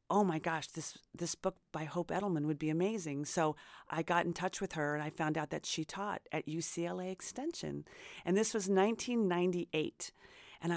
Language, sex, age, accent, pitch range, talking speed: English, female, 40-59, American, 155-200 Hz, 190 wpm